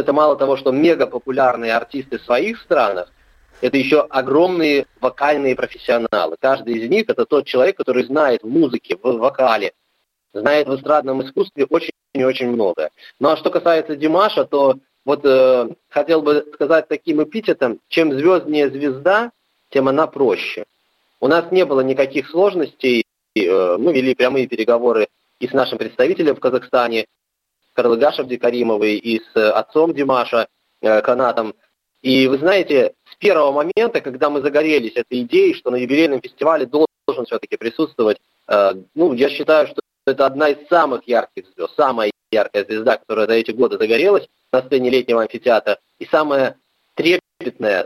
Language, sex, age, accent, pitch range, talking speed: Russian, male, 20-39, native, 125-175 Hz, 155 wpm